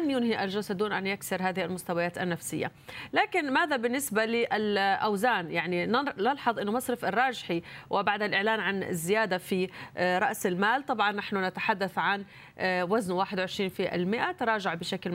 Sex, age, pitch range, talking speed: female, 30-49, 175-210 Hz, 135 wpm